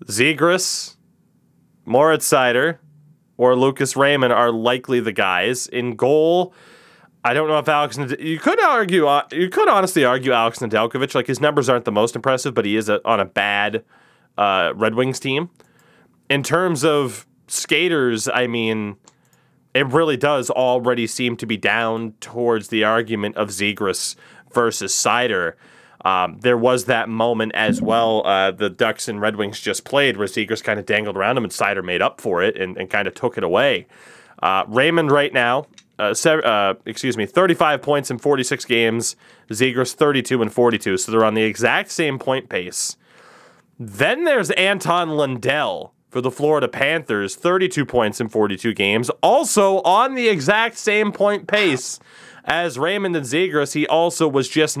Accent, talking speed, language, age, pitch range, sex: American, 170 wpm, English, 20-39, 115-155 Hz, male